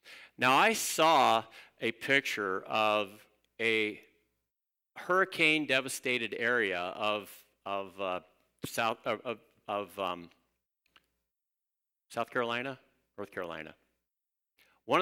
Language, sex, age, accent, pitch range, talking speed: English, male, 50-69, American, 100-145 Hz, 70 wpm